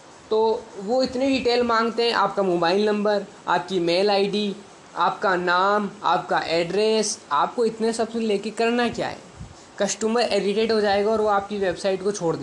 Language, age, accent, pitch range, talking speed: Hindi, 20-39, native, 180-225 Hz, 160 wpm